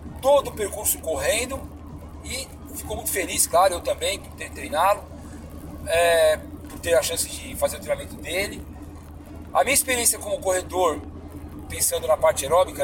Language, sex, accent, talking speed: Portuguese, male, Brazilian, 150 wpm